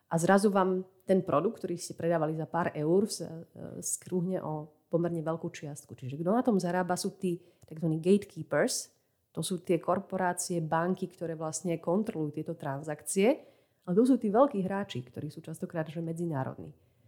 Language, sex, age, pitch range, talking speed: Slovak, female, 30-49, 155-185 Hz, 160 wpm